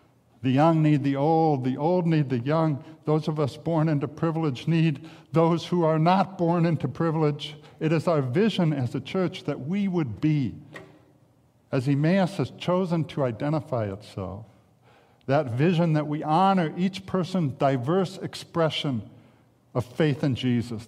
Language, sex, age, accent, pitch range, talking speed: English, male, 60-79, American, 120-160 Hz, 160 wpm